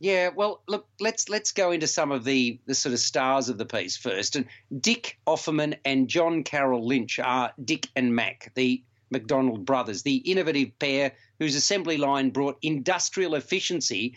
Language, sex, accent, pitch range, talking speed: English, male, Australian, 125-165 Hz, 175 wpm